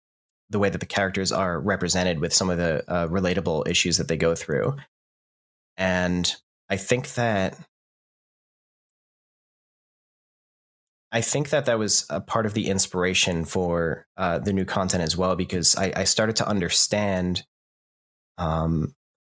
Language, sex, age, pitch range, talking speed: English, male, 30-49, 85-95 Hz, 145 wpm